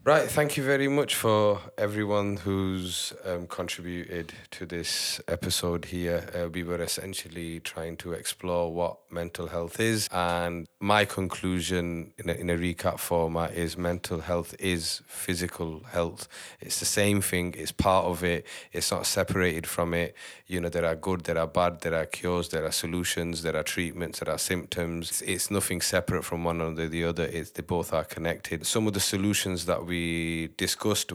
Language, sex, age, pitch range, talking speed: English, male, 30-49, 85-95 Hz, 180 wpm